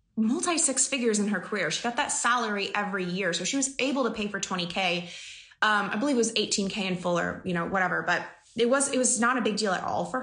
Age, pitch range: 20-39, 205-255 Hz